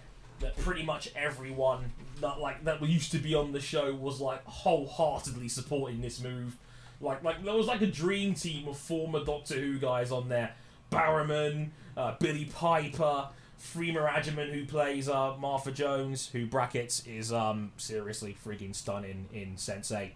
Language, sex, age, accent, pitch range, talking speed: English, male, 20-39, British, 125-155 Hz, 165 wpm